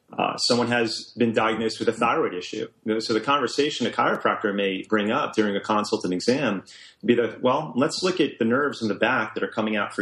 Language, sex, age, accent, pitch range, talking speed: English, male, 30-49, American, 105-120 Hz, 235 wpm